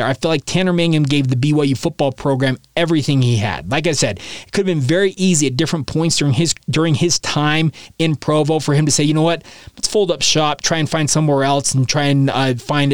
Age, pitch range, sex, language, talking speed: 20-39, 135-165 Hz, male, English, 245 wpm